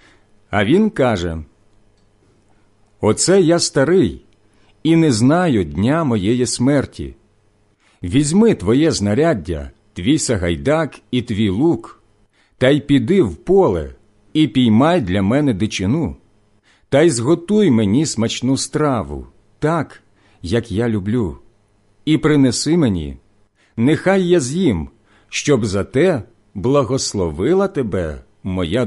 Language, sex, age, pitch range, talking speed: Ukrainian, male, 50-69, 100-145 Hz, 110 wpm